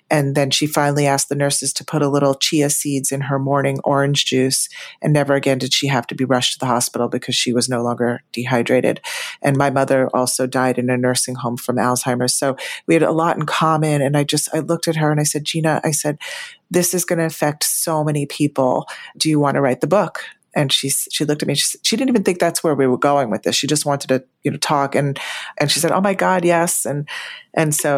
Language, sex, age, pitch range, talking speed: English, female, 40-59, 135-160 Hz, 255 wpm